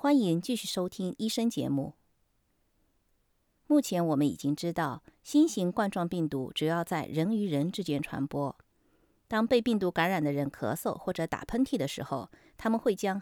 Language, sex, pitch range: Chinese, female, 150-205 Hz